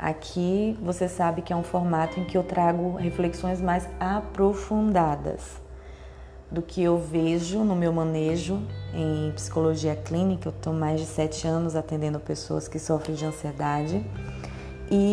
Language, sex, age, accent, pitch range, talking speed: Portuguese, female, 20-39, Brazilian, 155-190 Hz, 145 wpm